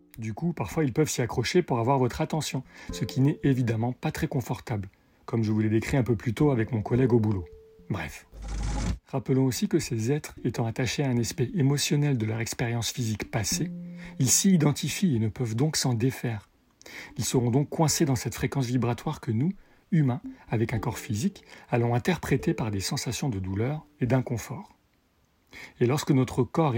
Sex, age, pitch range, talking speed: male, 40-59, 115-150 Hz, 195 wpm